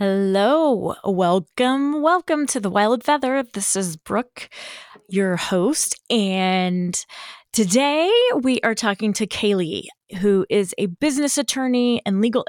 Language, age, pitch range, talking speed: English, 20-39, 185-245 Hz, 125 wpm